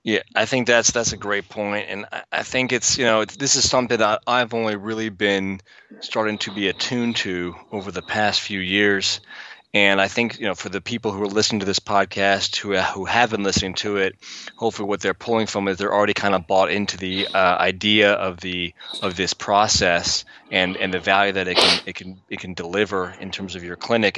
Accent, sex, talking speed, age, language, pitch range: American, male, 225 wpm, 20-39, English, 95-110 Hz